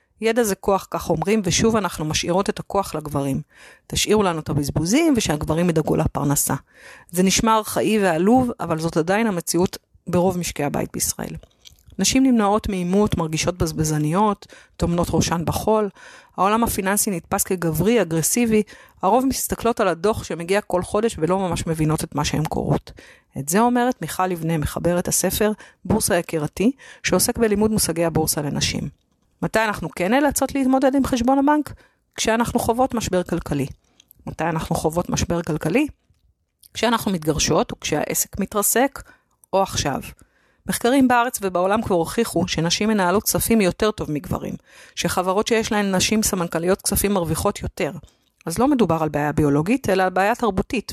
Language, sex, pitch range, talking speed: Hebrew, female, 165-220 Hz, 145 wpm